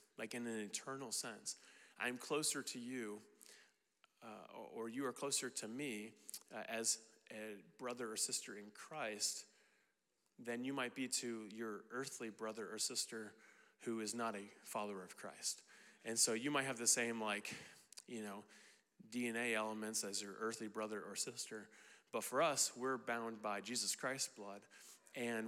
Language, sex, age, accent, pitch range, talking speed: English, male, 30-49, American, 105-125 Hz, 160 wpm